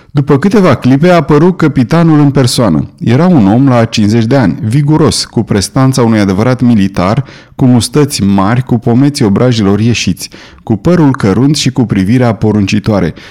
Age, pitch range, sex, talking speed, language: 30-49, 110-150 Hz, male, 160 wpm, Romanian